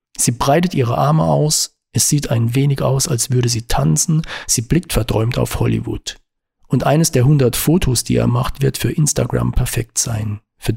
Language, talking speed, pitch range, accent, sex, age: German, 185 wpm, 115-140 Hz, German, male, 40-59